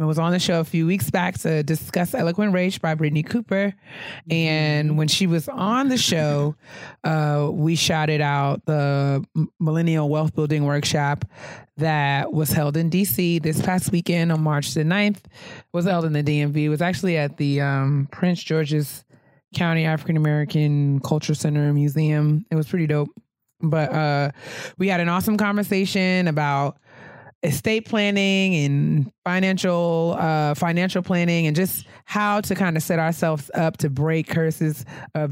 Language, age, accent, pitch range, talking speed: English, 20-39, American, 145-175 Hz, 165 wpm